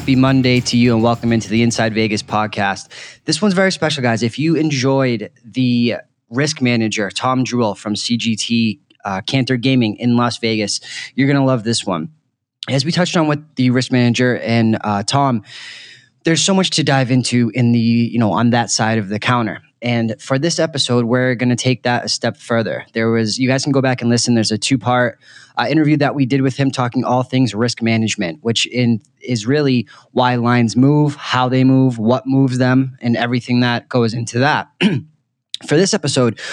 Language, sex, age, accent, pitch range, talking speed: English, male, 20-39, American, 115-135 Hz, 205 wpm